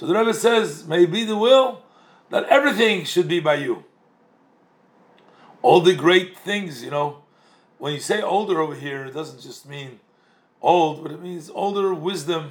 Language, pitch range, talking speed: English, 140-195 Hz, 175 wpm